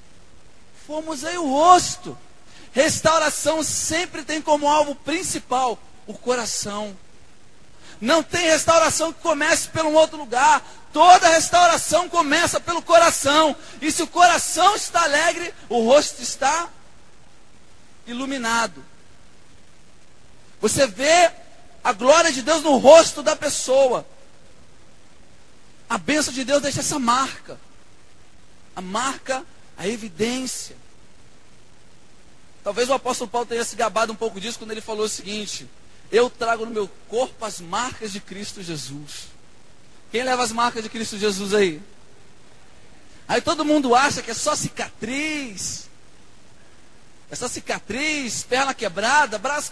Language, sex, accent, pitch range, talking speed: Portuguese, male, Brazilian, 225-320 Hz, 130 wpm